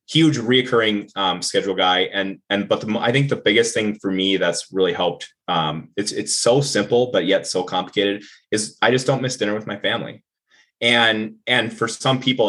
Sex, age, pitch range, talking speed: male, 20-39, 95-115 Hz, 190 wpm